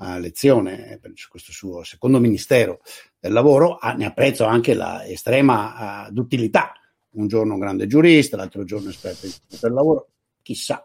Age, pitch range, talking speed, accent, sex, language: 60-79, 105-125 Hz, 145 wpm, native, male, Italian